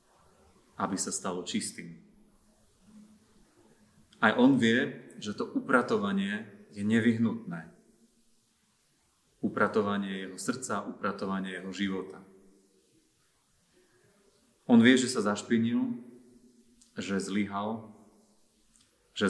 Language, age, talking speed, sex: Slovak, 30-49, 80 wpm, male